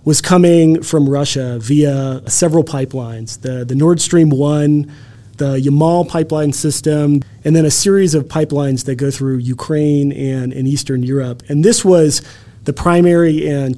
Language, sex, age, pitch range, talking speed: English, male, 30-49, 125-155 Hz, 155 wpm